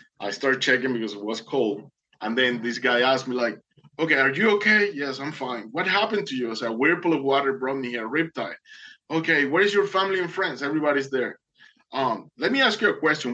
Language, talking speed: English, 230 wpm